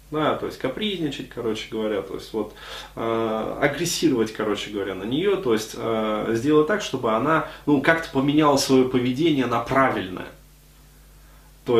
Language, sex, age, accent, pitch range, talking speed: Russian, male, 20-39, native, 115-155 Hz, 155 wpm